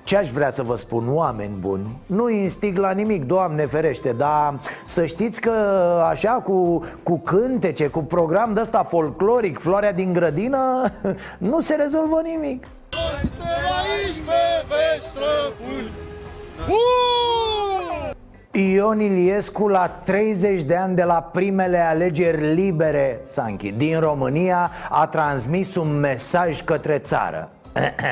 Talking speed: 110 wpm